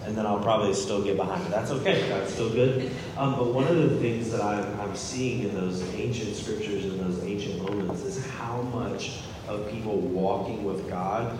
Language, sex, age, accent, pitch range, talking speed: English, male, 30-49, American, 95-115 Hz, 205 wpm